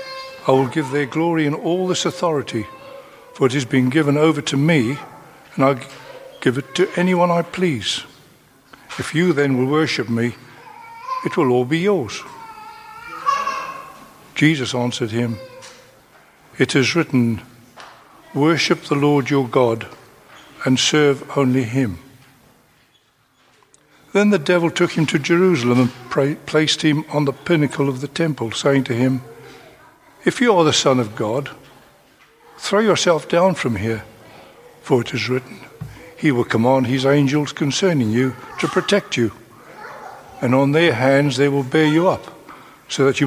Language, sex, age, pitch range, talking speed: English, male, 60-79, 130-170 Hz, 150 wpm